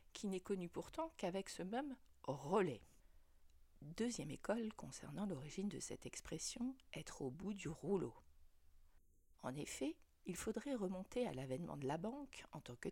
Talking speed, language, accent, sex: 155 wpm, French, French, female